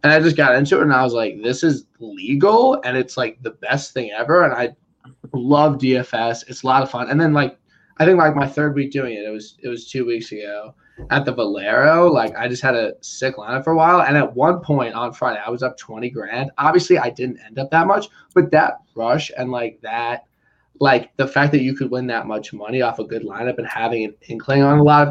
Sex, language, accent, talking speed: male, English, American, 255 wpm